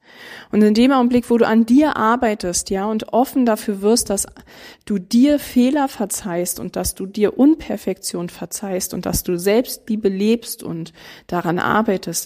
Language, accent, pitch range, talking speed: German, German, 185-225 Hz, 165 wpm